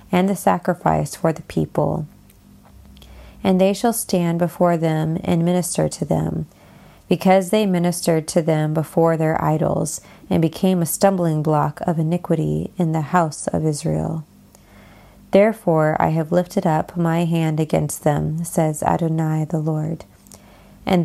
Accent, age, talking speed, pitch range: American, 20-39, 145 wpm, 155-190 Hz